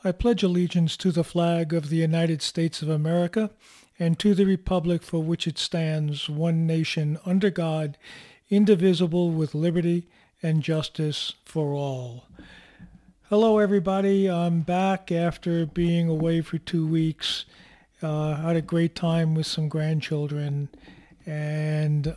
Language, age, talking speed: English, 40-59, 135 wpm